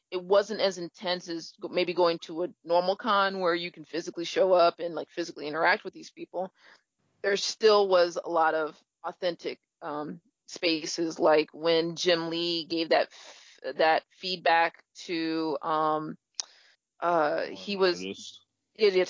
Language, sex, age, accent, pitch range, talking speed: English, female, 30-49, American, 170-210 Hz, 150 wpm